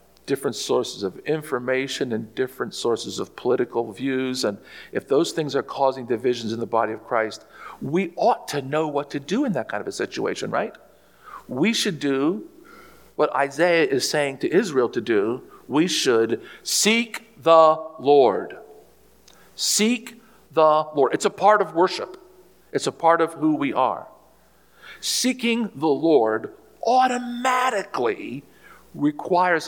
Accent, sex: American, male